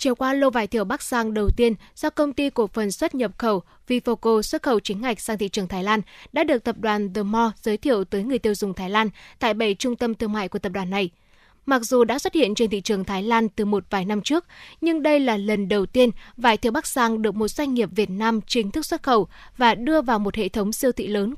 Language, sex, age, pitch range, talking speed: Vietnamese, female, 20-39, 210-255 Hz, 265 wpm